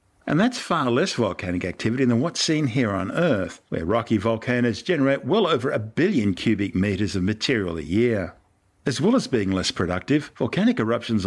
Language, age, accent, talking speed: English, 50-69, Australian, 180 wpm